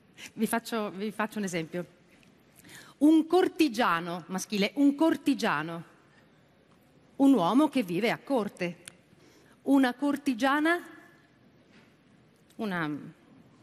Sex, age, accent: female, 40-59, native